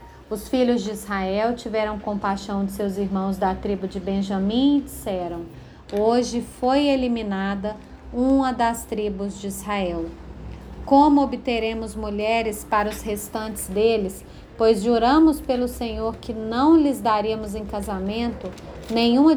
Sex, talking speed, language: female, 125 wpm, Portuguese